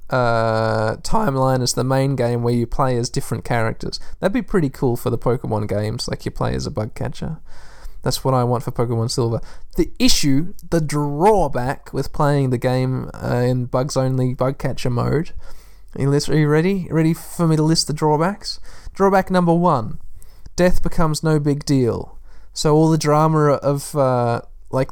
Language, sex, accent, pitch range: English, male, Australian, 125-160 Hz